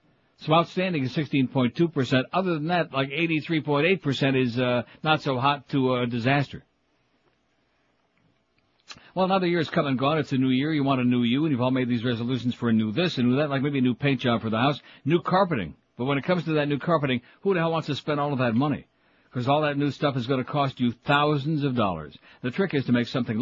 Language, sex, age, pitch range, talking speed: English, male, 60-79, 120-145 Hz, 235 wpm